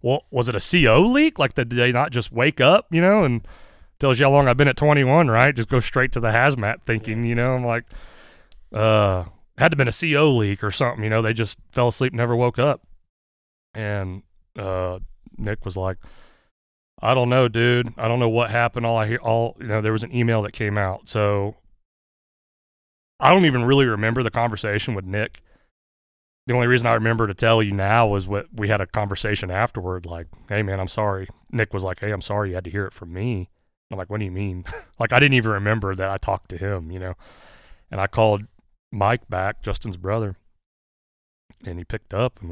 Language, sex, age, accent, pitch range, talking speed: English, male, 30-49, American, 90-115 Hz, 220 wpm